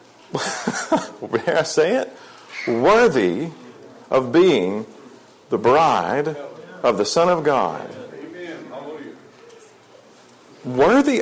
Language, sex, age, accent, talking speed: English, male, 40-59, American, 80 wpm